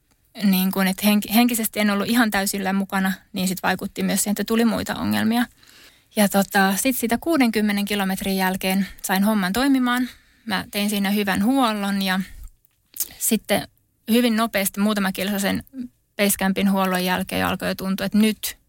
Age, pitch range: 20-39, 190-215 Hz